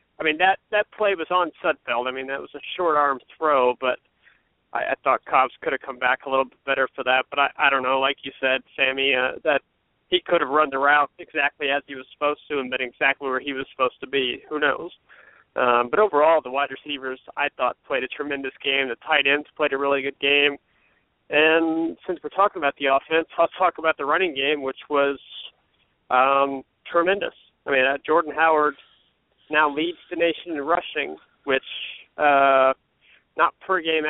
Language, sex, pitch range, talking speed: English, male, 135-155 Hz, 205 wpm